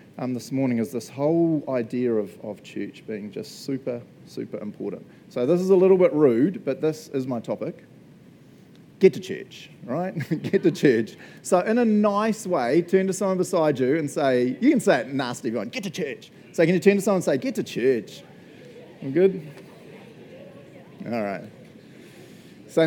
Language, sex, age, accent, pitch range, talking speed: English, male, 30-49, Australian, 125-185 Hz, 185 wpm